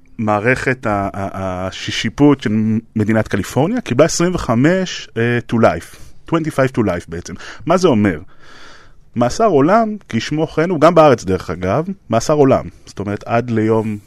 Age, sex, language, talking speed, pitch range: 30-49, male, Hebrew, 135 wpm, 100-135 Hz